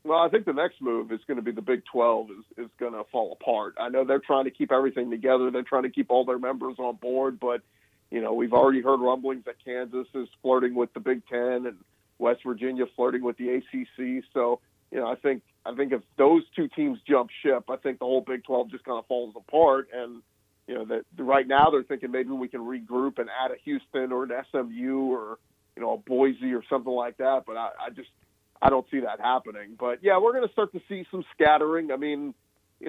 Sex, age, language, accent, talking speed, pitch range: male, 40-59, English, American, 245 wpm, 125-140 Hz